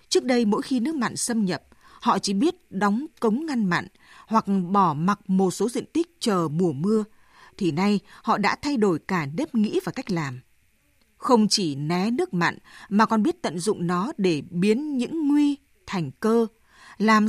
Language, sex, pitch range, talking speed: Vietnamese, female, 185-245 Hz, 190 wpm